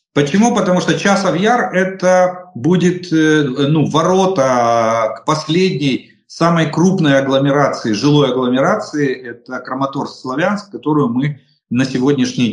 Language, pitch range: Russian, 135-175 Hz